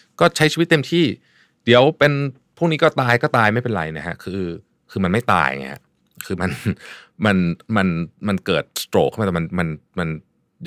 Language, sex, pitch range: Thai, male, 90-125 Hz